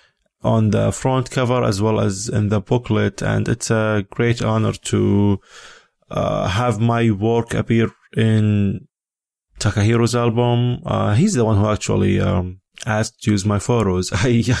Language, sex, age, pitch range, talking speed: English, male, 20-39, 100-120 Hz, 150 wpm